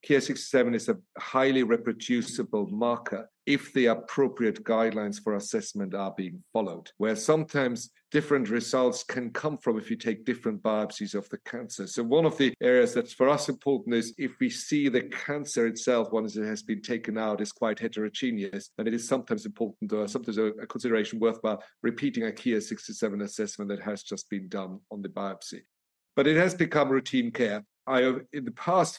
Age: 50-69